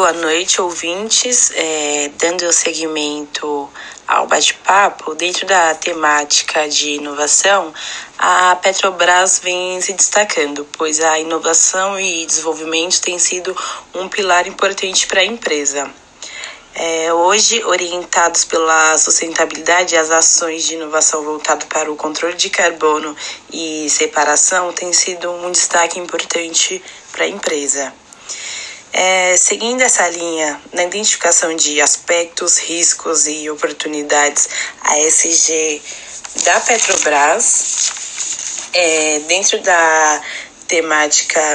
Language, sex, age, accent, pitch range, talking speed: Portuguese, female, 20-39, Brazilian, 155-185 Hz, 110 wpm